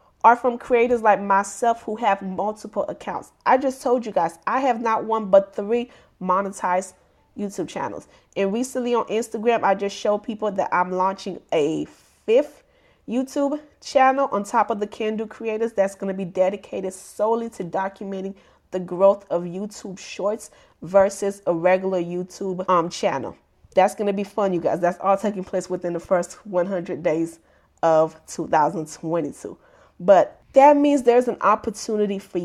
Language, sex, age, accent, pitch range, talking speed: English, female, 30-49, American, 190-240 Hz, 165 wpm